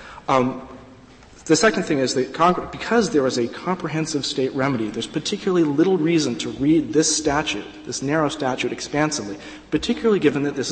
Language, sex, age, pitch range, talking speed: English, male, 40-59, 125-160 Hz, 160 wpm